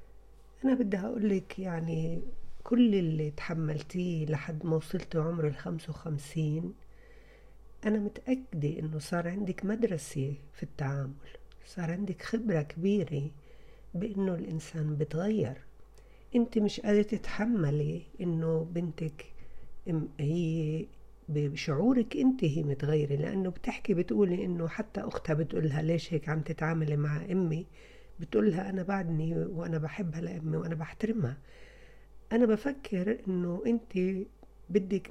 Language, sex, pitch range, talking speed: Arabic, female, 155-200 Hz, 110 wpm